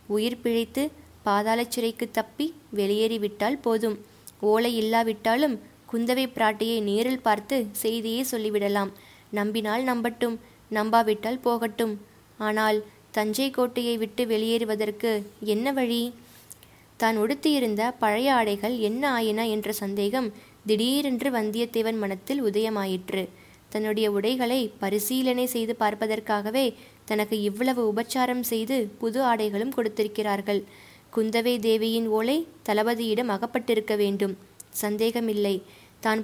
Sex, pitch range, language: female, 210-240 Hz, Tamil